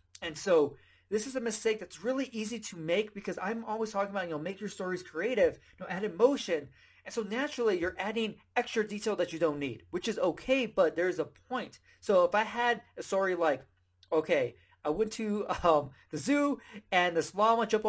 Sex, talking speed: male, 210 wpm